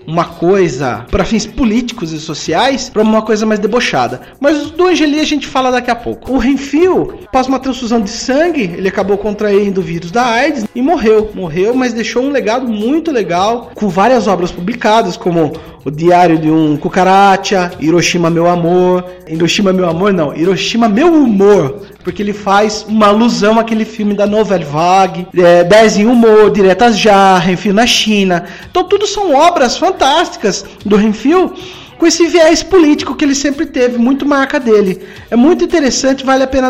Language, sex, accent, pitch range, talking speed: Portuguese, male, Brazilian, 195-270 Hz, 175 wpm